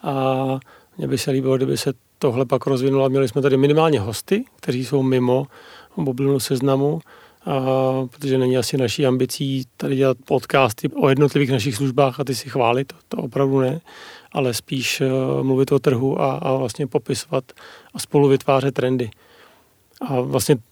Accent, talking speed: native, 165 wpm